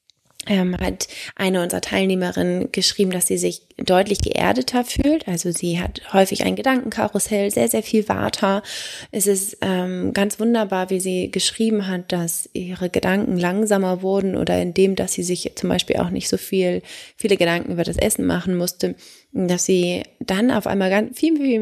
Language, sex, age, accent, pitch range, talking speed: English, female, 20-39, German, 170-205 Hz, 170 wpm